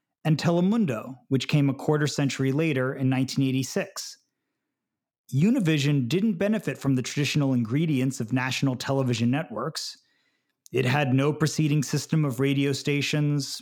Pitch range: 135-175 Hz